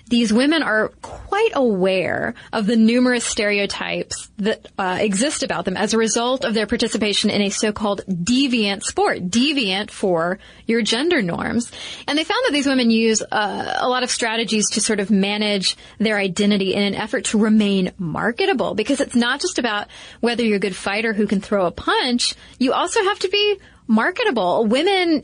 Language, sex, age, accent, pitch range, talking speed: English, female, 20-39, American, 200-250 Hz, 180 wpm